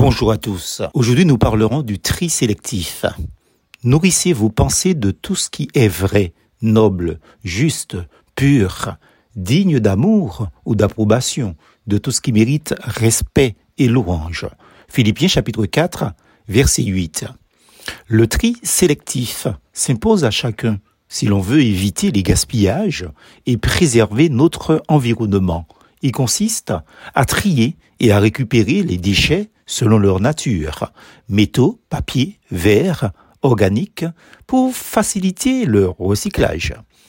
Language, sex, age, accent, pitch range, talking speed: French, male, 60-79, French, 105-145 Hz, 120 wpm